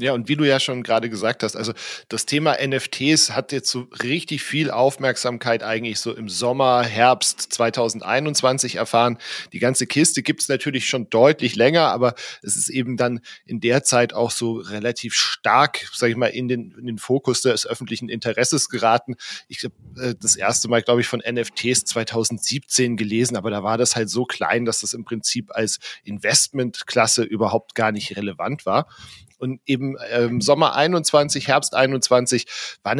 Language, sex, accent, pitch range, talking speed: German, male, German, 115-130 Hz, 175 wpm